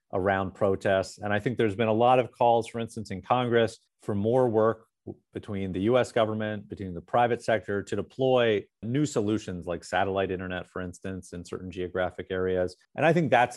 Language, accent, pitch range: English, American, 90-110 Hz